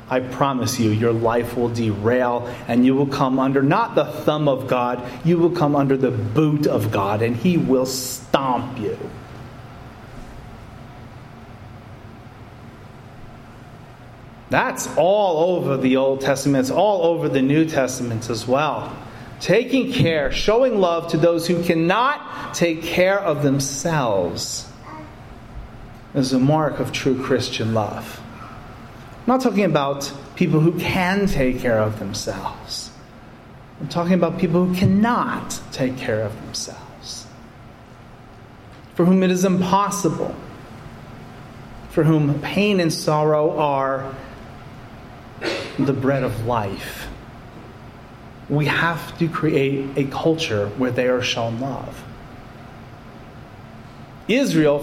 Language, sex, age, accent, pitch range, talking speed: English, male, 30-49, American, 120-150 Hz, 120 wpm